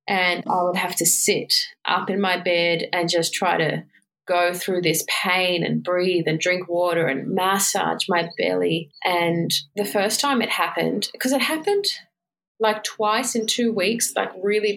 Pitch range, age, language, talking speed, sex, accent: 180-220 Hz, 30-49, English, 175 wpm, female, Australian